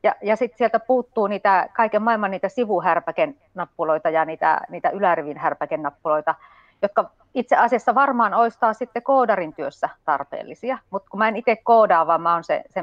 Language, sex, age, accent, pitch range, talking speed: Finnish, female, 30-49, native, 170-230 Hz, 165 wpm